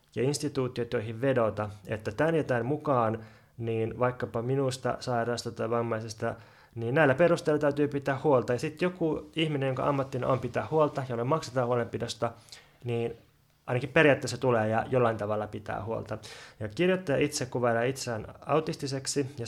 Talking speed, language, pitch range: 145 wpm, Finnish, 115-135 Hz